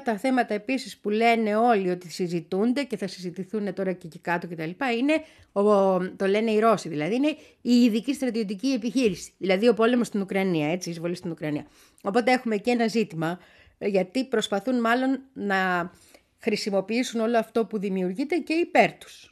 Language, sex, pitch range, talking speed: Greek, female, 185-260 Hz, 165 wpm